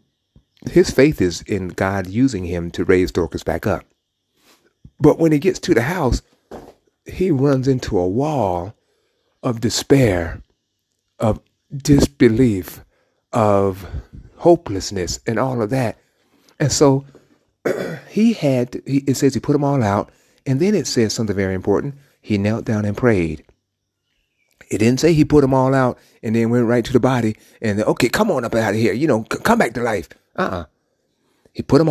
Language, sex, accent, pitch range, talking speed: English, male, American, 95-130 Hz, 170 wpm